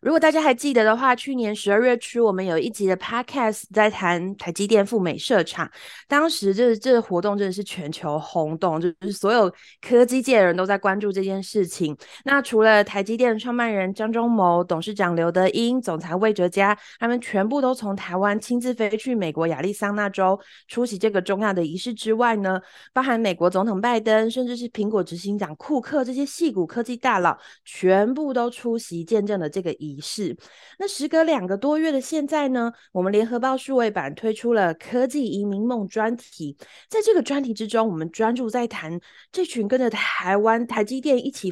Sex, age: female, 20-39